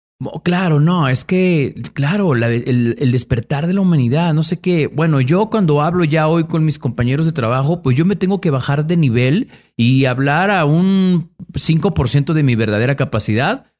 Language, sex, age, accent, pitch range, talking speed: Spanish, male, 40-59, Mexican, 115-160 Hz, 185 wpm